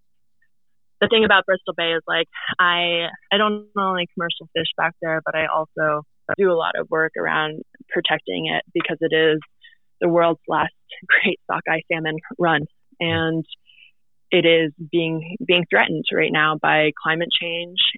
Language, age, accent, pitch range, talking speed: English, 20-39, American, 155-175 Hz, 155 wpm